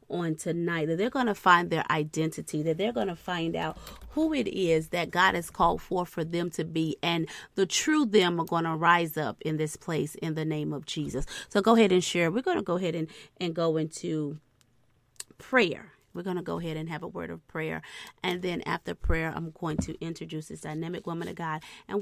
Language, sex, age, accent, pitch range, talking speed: English, female, 30-49, American, 165-205 Hz, 230 wpm